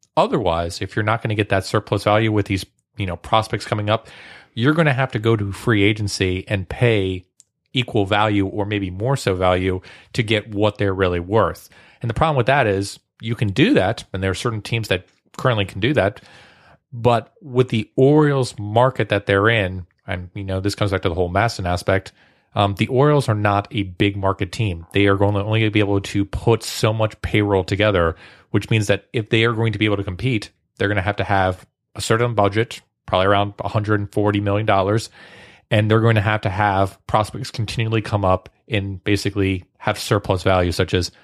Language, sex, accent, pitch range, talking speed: English, male, American, 95-110 Hz, 210 wpm